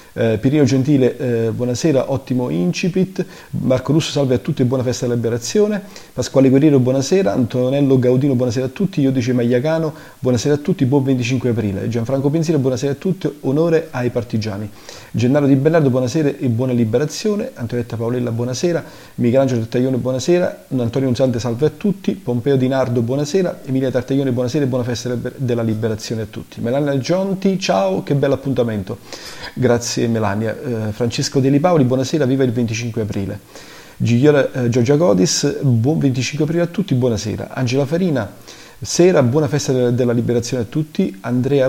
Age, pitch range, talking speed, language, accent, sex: 40-59, 120-145 Hz, 155 wpm, Italian, native, male